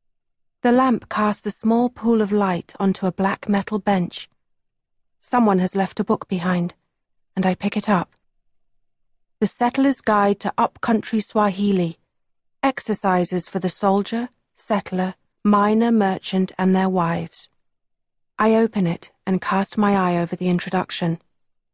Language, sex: English, female